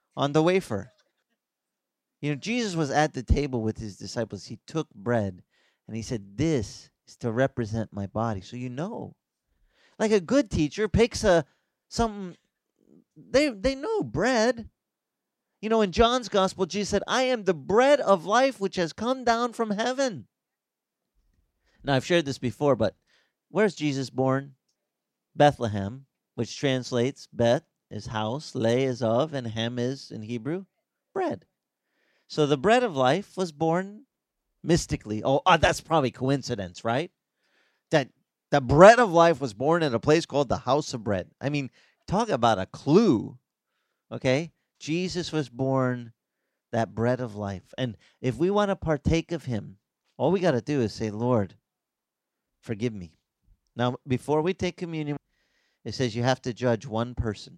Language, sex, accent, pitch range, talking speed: English, male, American, 120-185 Hz, 165 wpm